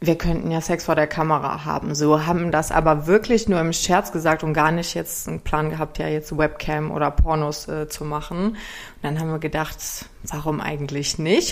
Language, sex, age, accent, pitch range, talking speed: German, female, 20-39, German, 150-170 Hz, 210 wpm